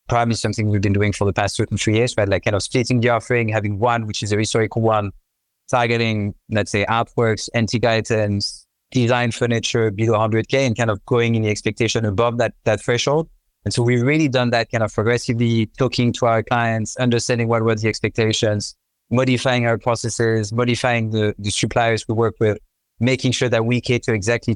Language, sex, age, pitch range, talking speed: English, male, 30-49, 110-120 Hz, 200 wpm